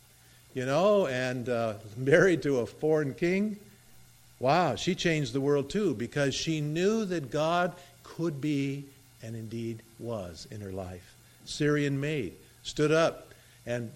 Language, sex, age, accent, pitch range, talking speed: English, male, 50-69, American, 115-165 Hz, 140 wpm